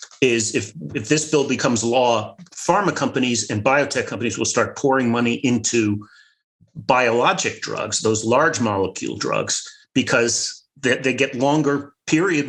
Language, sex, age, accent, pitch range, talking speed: English, male, 40-59, American, 115-150 Hz, 140 wpm